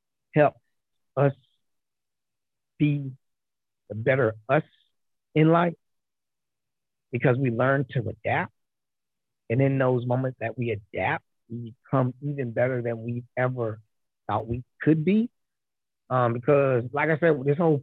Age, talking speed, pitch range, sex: 30-49, 130 wpm, 120-155 Hz, male